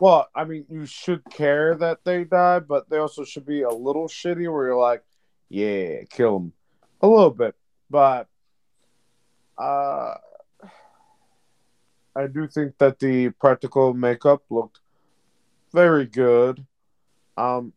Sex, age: male, 30-49